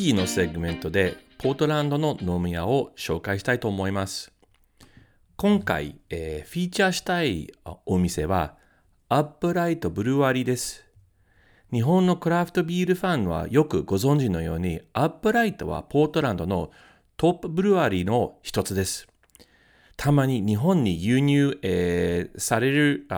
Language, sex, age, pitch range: Japanese, male, 40-59, 95-150 Hz